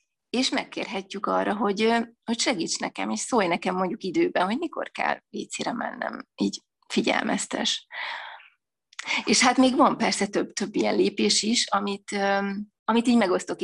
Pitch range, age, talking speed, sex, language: 195-260 Hz, 30-49, 140 wpm, female, Hungarian